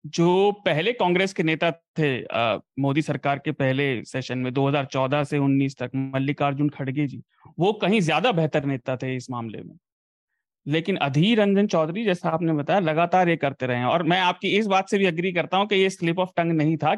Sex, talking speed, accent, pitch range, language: male, 200 wpm, native, 145-190 Hz, Hindi